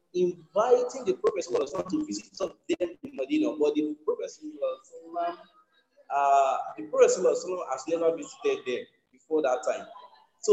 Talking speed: 150 wpm